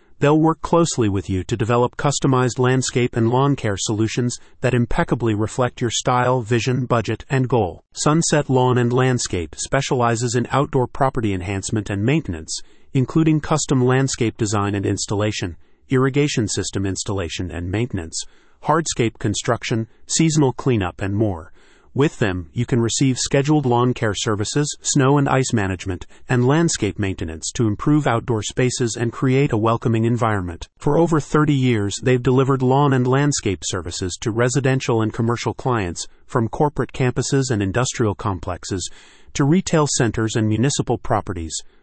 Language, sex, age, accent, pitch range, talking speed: English, male, 40-59, American, 105-135 Hz, 145 wpm